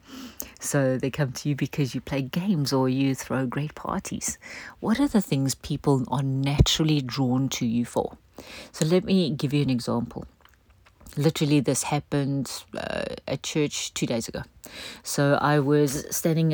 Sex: female